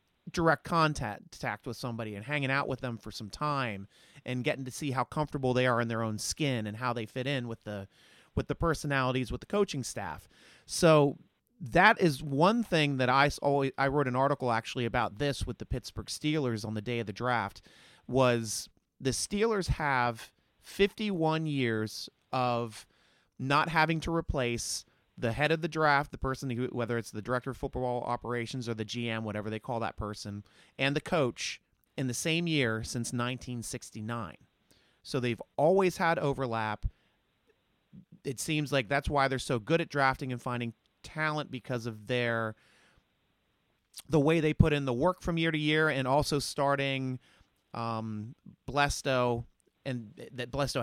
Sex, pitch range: male, 115-145 Hz